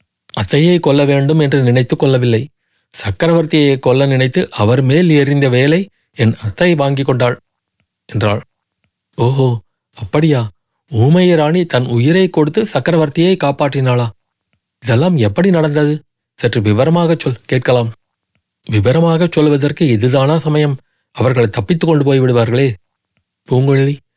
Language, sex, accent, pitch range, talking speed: Tamil, male, native, 120-155 Hz, 105 wpm